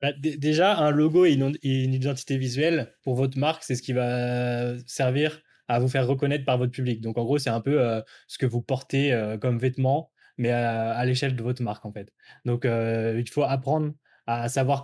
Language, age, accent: French, 20-39, French